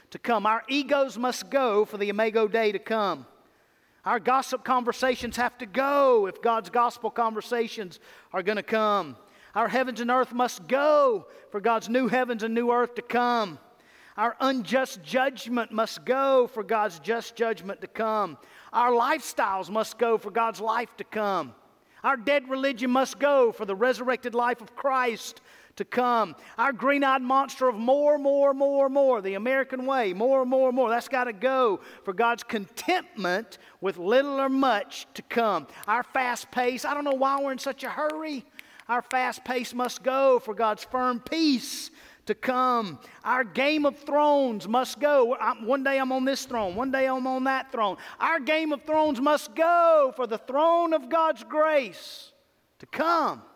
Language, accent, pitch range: English, American, 225-275 Hz